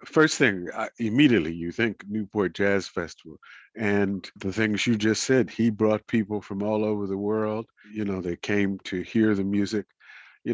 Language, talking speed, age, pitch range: English, 175 wpm, 50-69, 100-115 Hz